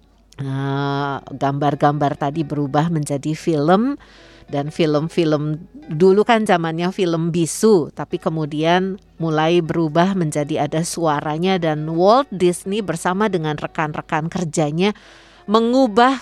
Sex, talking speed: female, 100 wpm